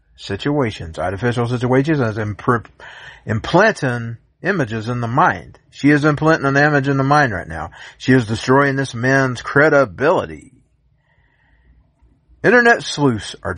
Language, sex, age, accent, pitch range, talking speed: English, male, 50-69, American, 110-150 Hz, 130 wpm